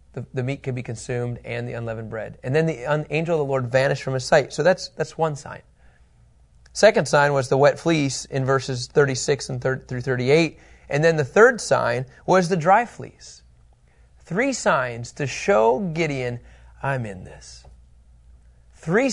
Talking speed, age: 175 wpm, 30-49